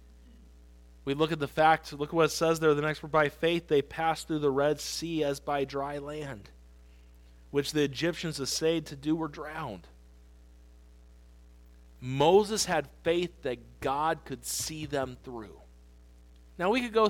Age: 40-59